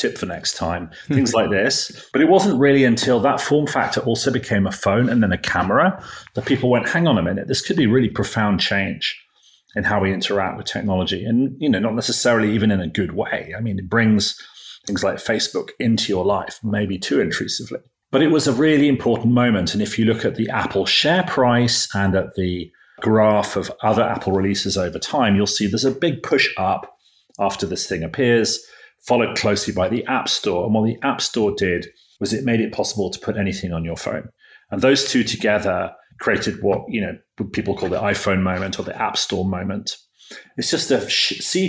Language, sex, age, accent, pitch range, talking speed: English, male, 40-59, British, 100-130 Hz, 215 wpm